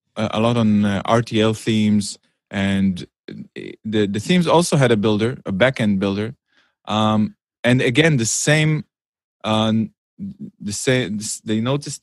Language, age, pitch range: English, 20-39, 105-130 Hz